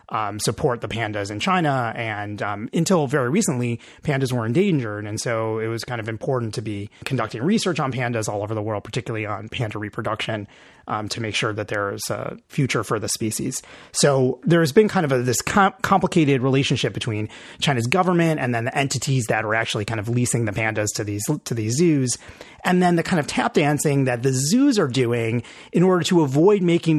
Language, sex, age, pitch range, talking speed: English, male, 30-49, 115-170 Hz, 200 wpm